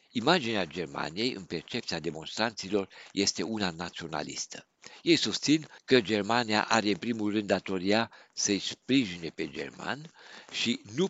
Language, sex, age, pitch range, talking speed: Romanian, male, 60-79, 90-120 Hz, 125 wpm